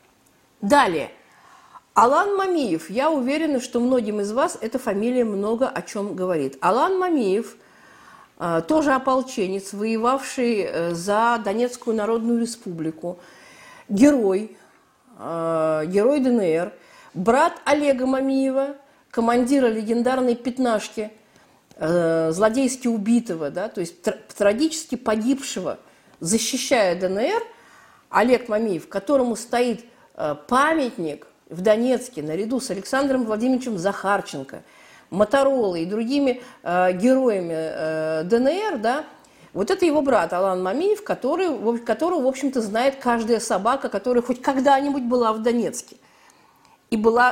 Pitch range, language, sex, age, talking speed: 205-265 Hz, Russian, female, 40-59, 110 wpm